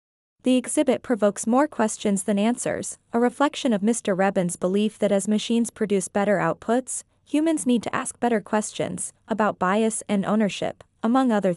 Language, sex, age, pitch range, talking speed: Vietnamese, female, 20-39, 200-250 Hz, 160 wpm